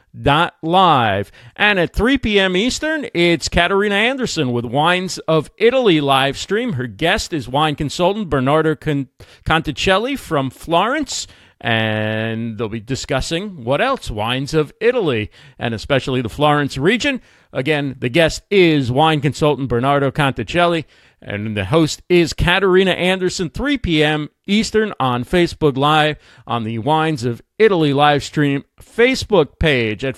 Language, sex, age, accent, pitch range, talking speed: English, male, 40-59, American, 140-200 Hz, 135 wpm